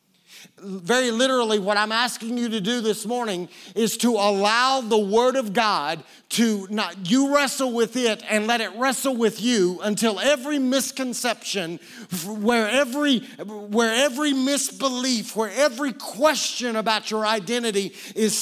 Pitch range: 160-225 Hz